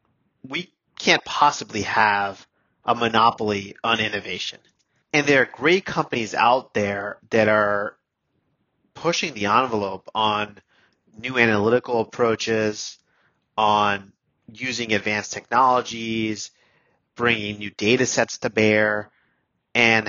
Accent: American